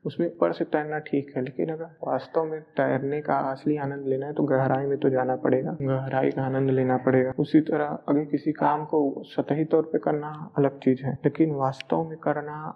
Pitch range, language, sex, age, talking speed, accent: 135-150 Hz, Hindi, male, 20-39, 200 wpm, native